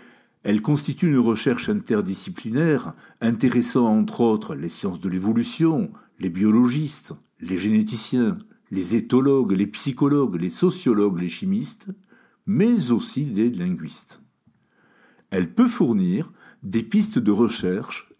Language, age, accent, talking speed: French, 60-79, French, 115 wpm